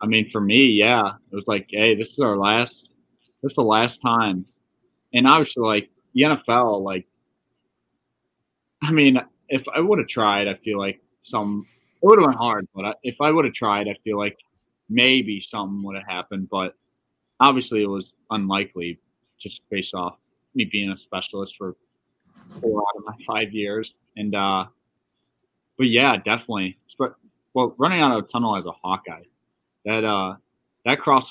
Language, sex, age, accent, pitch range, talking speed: English, male, 20-39, American, 95-115 Hz, 180 wpm